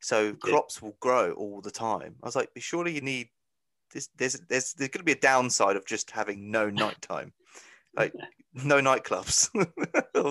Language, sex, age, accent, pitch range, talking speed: English, male, 20-39, British, 105-145 Hz, 180 wpm